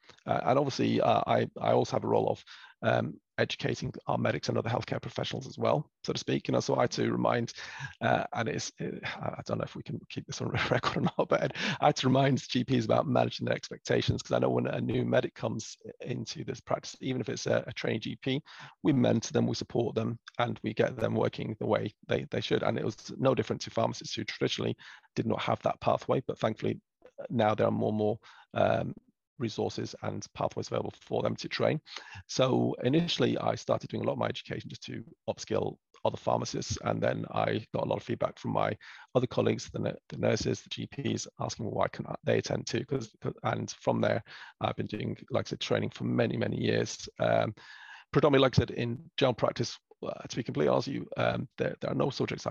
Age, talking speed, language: 30-49, 220 wpm, English